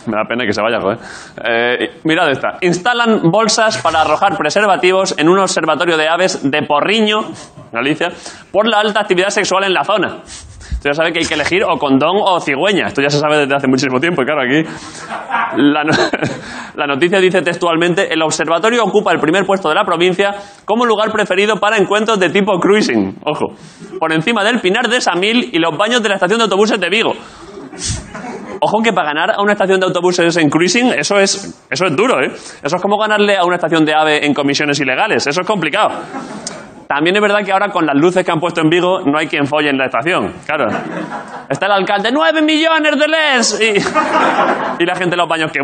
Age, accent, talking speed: 20-39, Spanish, 215 wpm